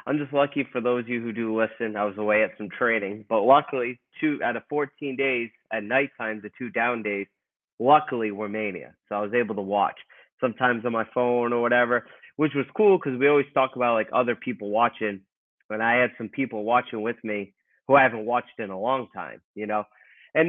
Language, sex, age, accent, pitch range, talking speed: English, male, 30-49, American, 105-130 Hz, 220 wpm